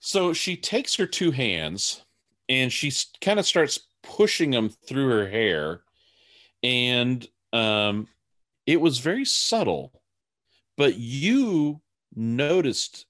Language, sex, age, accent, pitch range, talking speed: English, male, 40-59, American, 110-155 Hz, 115 wpm